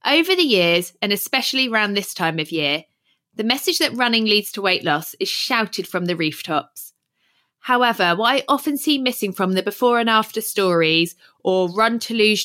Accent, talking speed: British, 180 wpm